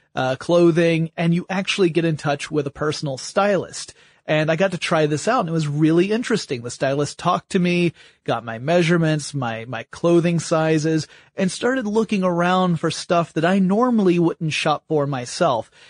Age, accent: 30-49, American